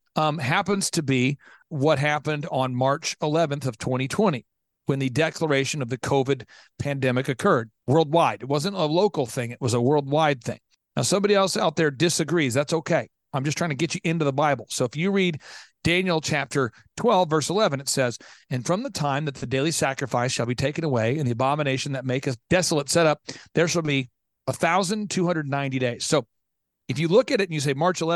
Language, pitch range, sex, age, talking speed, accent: English, 135-165 Hz, male, 40-59, 200 wpm, American